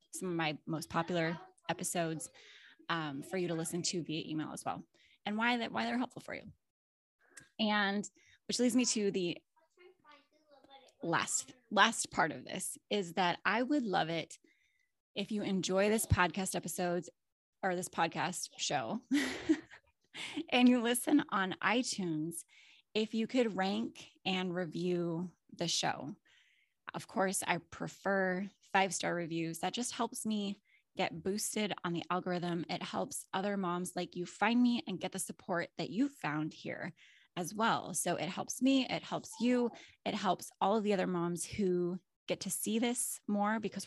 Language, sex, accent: English, female, American